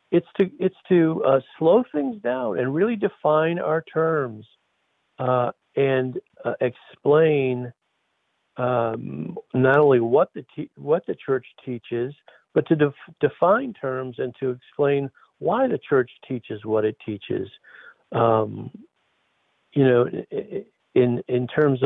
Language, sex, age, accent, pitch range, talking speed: English, male, 50-69, American, 125-180 Hz, 130 wpm